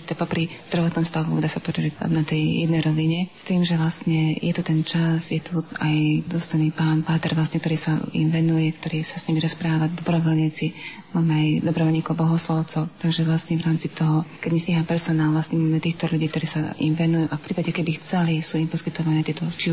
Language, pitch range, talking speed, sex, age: Slovak, 155-165 Hz, 200 wpm, female, 30-49